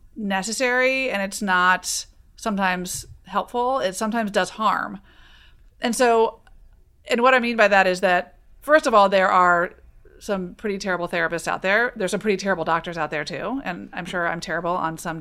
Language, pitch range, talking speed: English, 180-230 Hz, 180 wpm